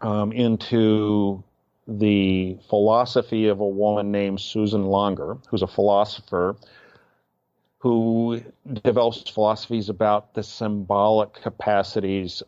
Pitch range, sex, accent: 100-115 Hz, male, American